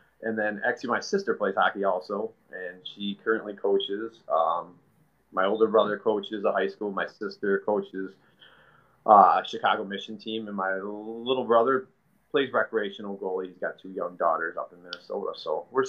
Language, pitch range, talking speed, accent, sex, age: English, 100-130 Hz, 170 wpm, American, male, 30-49